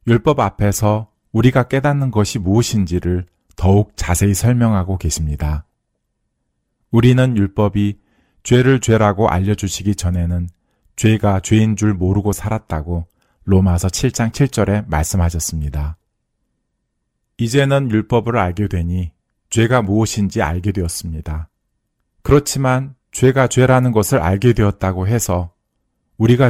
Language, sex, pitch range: Korean, male, 90-115 Hz